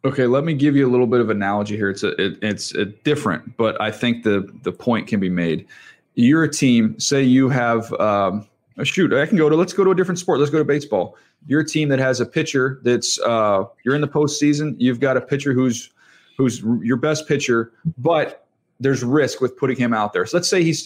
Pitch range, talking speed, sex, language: 125-155 Hz, 240 wpm, male, English